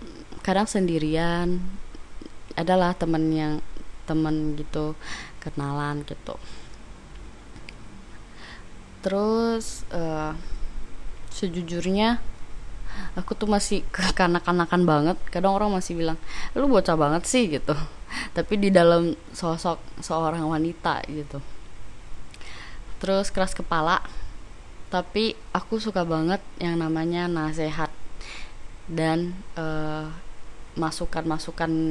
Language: English